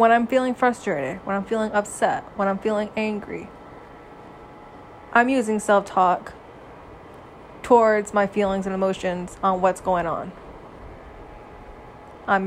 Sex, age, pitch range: female, 20-39, 185-225 Hz